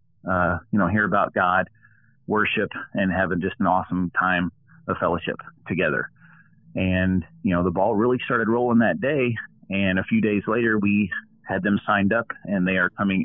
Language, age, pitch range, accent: English, 30-49, 90-105 Hz, American